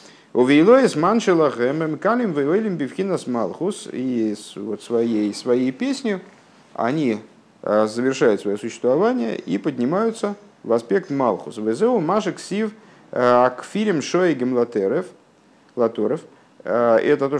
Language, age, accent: Russian, 50-69, native